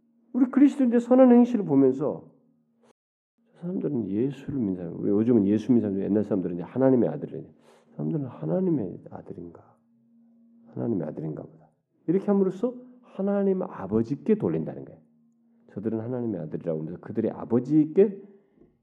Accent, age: native, 40-59